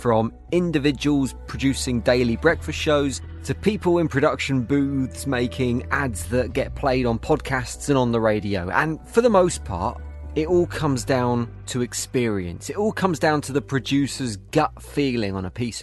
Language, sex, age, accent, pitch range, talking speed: English, male, 30-49, British, 110-150 Hz, 170 wpm